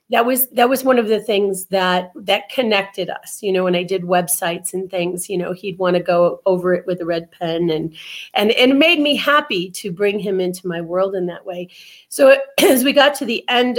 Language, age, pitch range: English, 40-59, 185-240 Hz